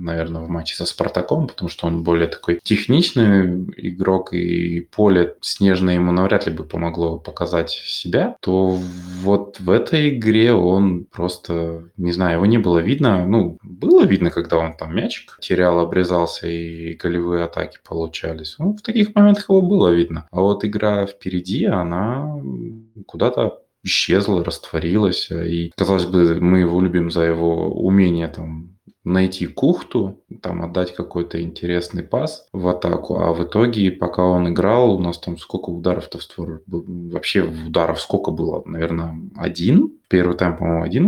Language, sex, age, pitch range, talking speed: Russian, male, 20-39, 85-95 Hz, 155 wpm